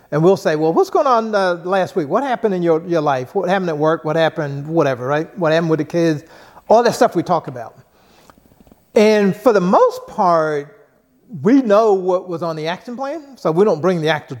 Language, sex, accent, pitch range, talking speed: English, male, American, 165-220 Hz, 225 wpm